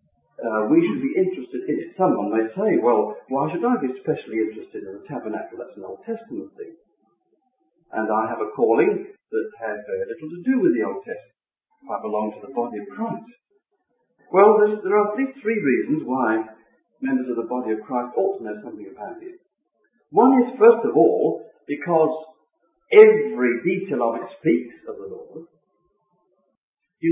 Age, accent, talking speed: 50-69, British, 185 wpm